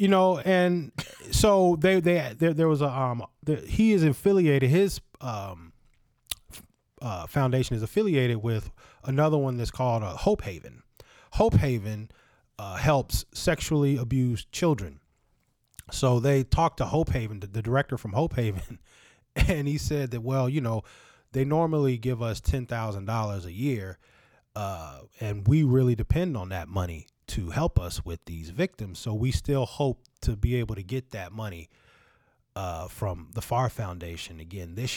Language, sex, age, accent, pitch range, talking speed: English, male, 20-39, American, 105-150 Hz, 160 wpm